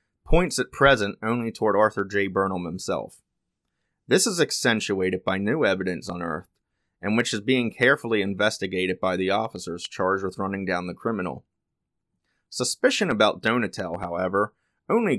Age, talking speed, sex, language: 30-49, 140 wpm, male, English